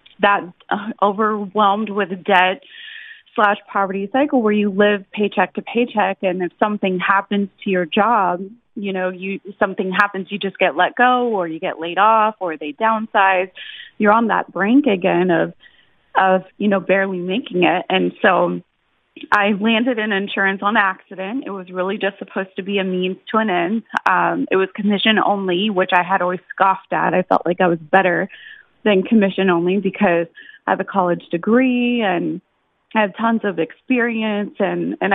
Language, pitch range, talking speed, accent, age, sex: English, 185-215 Hz, 180 wpm, American, 30-49, female